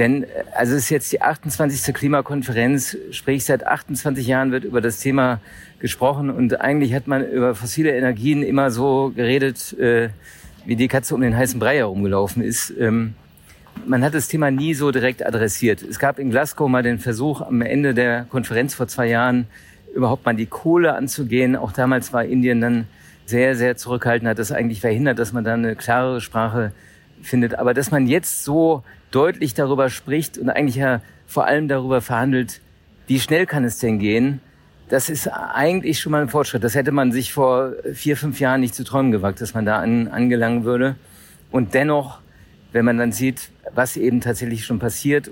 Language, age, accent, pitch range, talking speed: German, 50-69, German, 115-135 Hz, 185 wpm